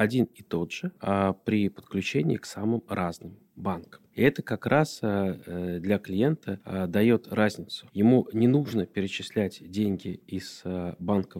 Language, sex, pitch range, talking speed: Russian, male, 95-125 Hz, 130 wpm